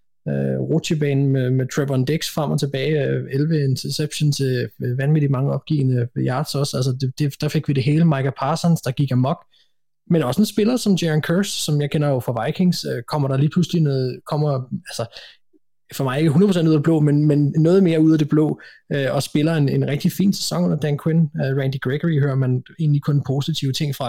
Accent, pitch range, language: native, 135-160 Hz, Danish